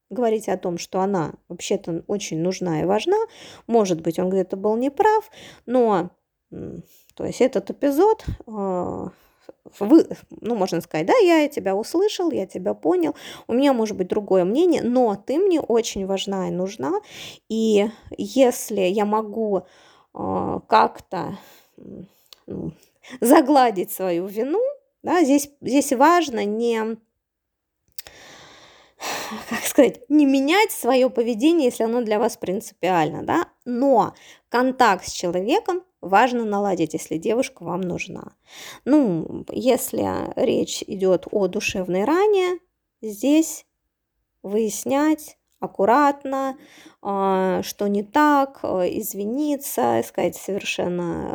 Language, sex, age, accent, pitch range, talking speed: Russian, female, 20-39, native, 190-285 Hz, 110 wpm